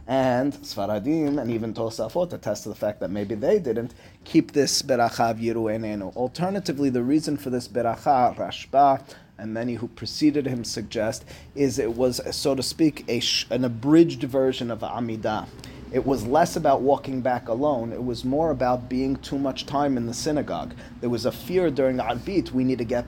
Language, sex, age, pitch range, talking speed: English, male, 30-49, 115-140 Hz, 180 wpm